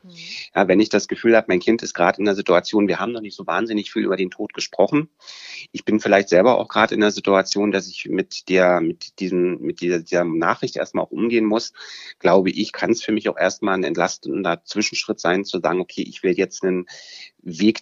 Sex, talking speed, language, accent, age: male, 225 wpm, German, German, 30-49